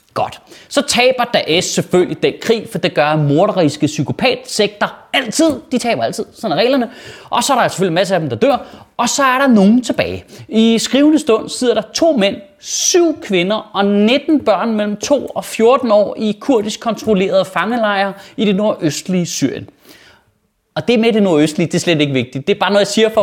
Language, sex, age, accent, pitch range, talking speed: Danish, male, 30-49, native, 180-255 Hz, 200 wpm